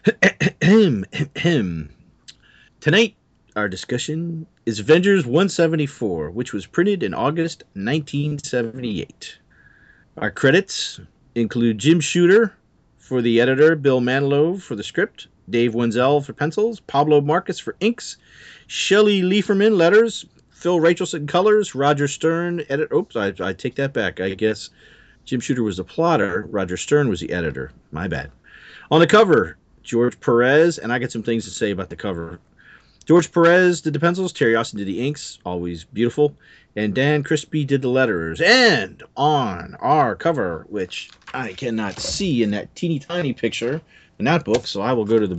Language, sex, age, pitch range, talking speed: English, male, 40-59, 115-170 Hz, 155 wpm